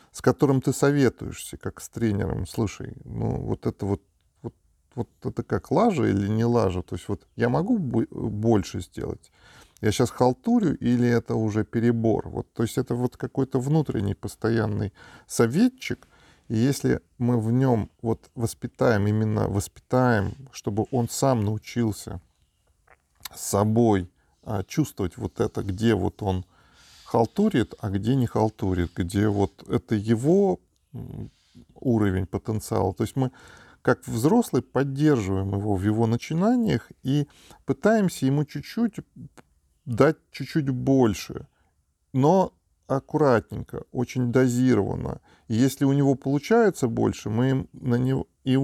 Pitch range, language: 105-135 Hz, Russian